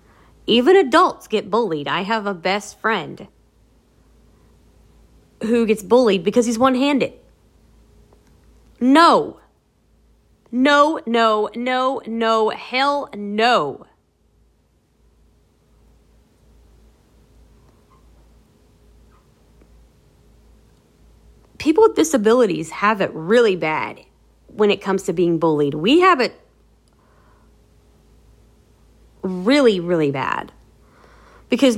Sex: female